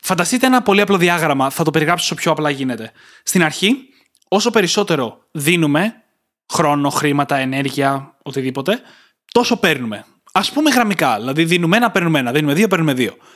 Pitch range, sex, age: 145-210 Hz, male, 20-39